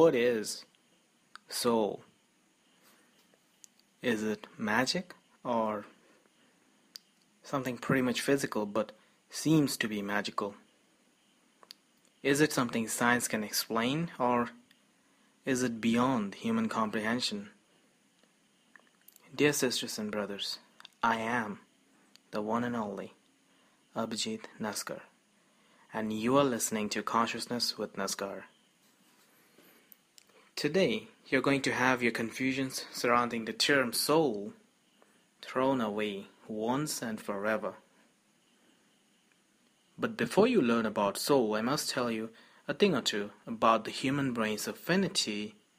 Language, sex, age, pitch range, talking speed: English, male, 20-39, 110-150 Hz, 110 wpm